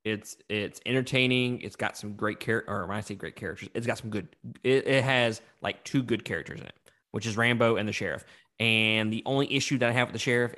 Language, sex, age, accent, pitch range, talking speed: English, male, 20-39, American, 105-125 Hz, 245 wpm